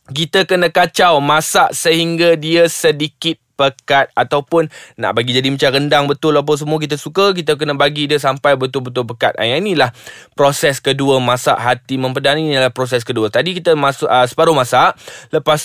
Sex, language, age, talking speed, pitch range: male, Malay, 20-39, 170 wpm, 125-160 Hz